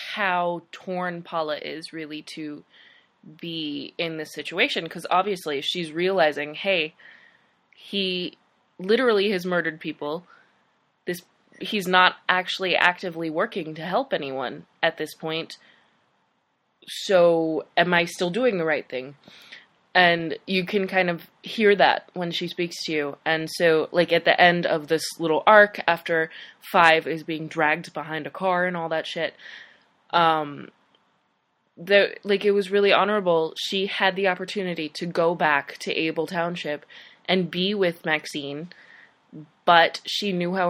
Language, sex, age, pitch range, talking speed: English, female, 20-39, 155-185 Hz, 145 wpm